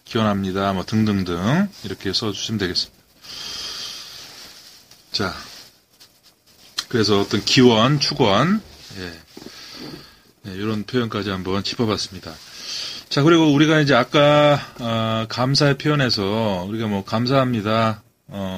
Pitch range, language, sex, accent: 100-130 Hz, Korean, male, native